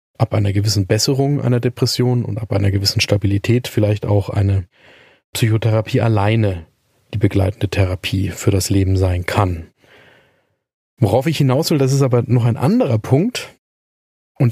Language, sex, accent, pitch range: German, male, German, 105-130 Hz